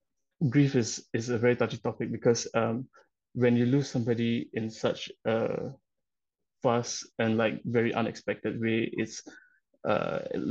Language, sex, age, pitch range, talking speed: English, male, 20-39, 115-125 Hz, 135 wpm